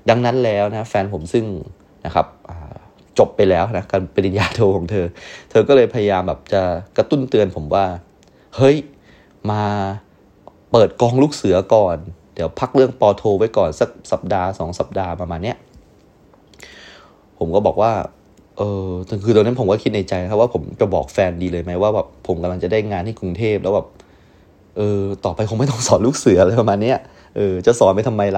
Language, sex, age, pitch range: Thai, male, 20-39, 90-120 Hz